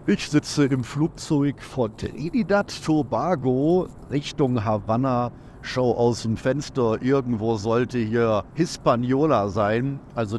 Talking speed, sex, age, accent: 110 wpm, male, 50-69, German